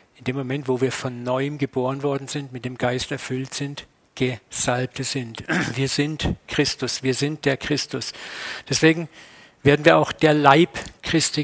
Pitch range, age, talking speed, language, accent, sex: 135-155 Hz, 50-69, 165 wpm, German, German, male